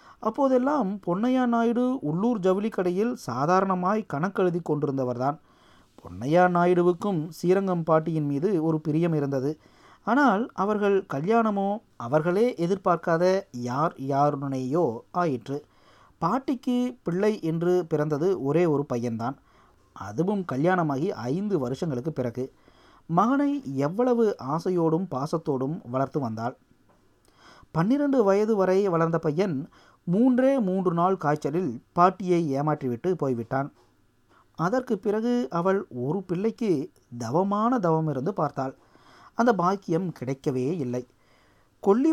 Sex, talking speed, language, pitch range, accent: male, 100 wpm, Tamil, 145-200 Hz, native